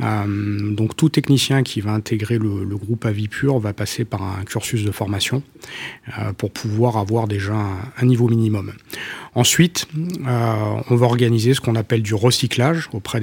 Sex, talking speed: male, 170 wpm